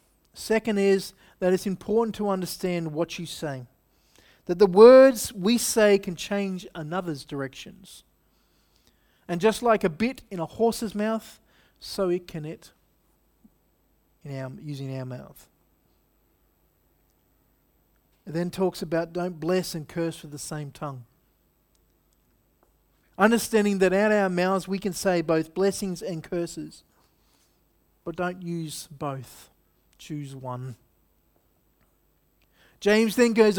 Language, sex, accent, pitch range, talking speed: English, male, Australian, 150-200 Hz, 125 wpm